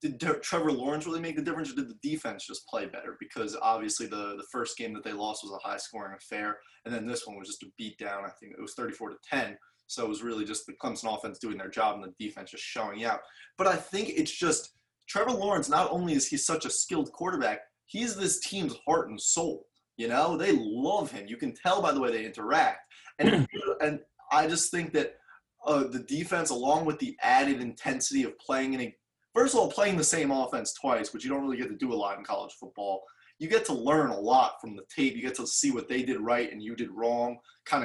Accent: American